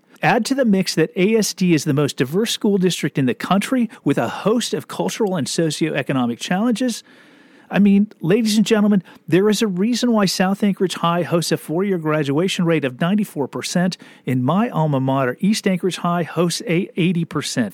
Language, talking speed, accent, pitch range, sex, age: English, 180 wpm, American, 150-200 Hz, male, 40-59